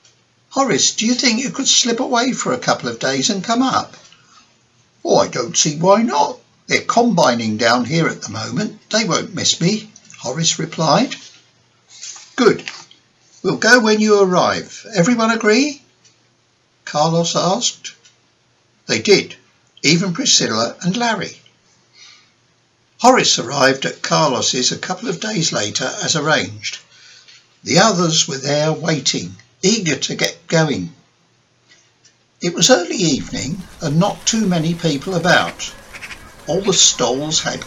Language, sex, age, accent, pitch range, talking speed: English, male, 60-79, British, 135-210 Hz, 135 wpm